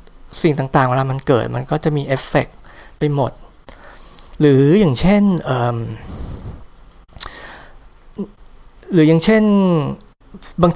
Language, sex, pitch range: Thai, male, 140-175 Hz